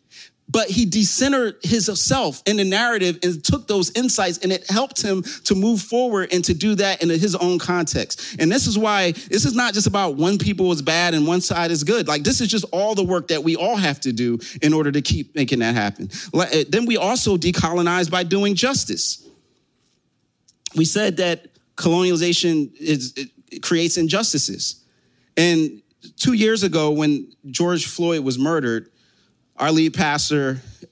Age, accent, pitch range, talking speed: 30-49, American, 130-180 Hz, 175 wpm